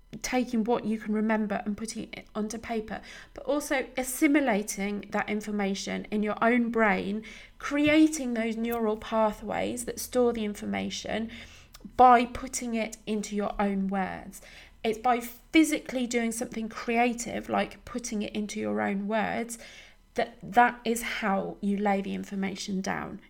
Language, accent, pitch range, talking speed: English, British, 205-260 Hz, 145 wpm